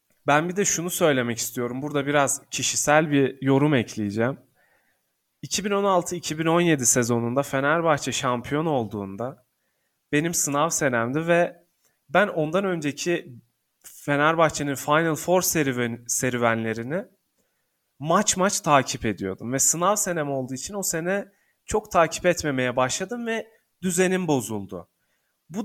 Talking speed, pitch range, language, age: 110 wpm, 130-180 Hz, Turkish, 30-49